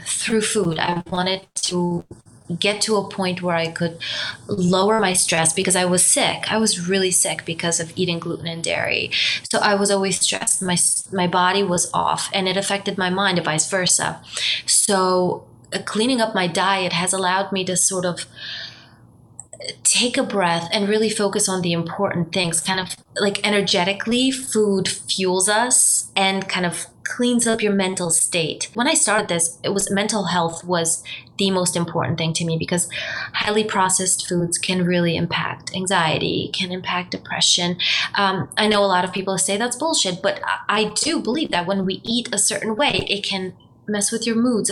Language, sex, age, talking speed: English, female, 20-39, 185 wpm